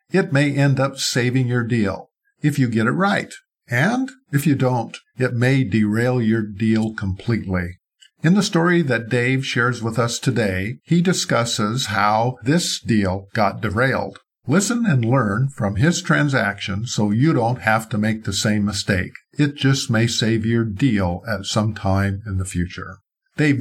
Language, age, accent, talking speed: English, 50-69, American, 170 wpm